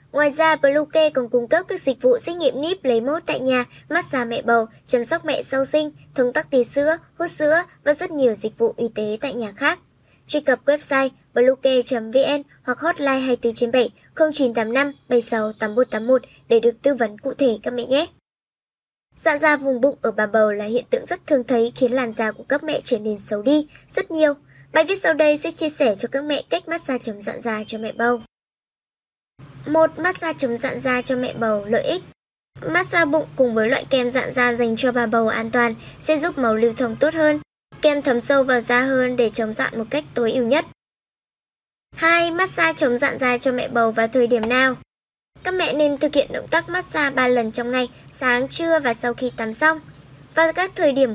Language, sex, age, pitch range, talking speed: Vietnamese, male, 20-39, 240-300 Hz, 215 wpm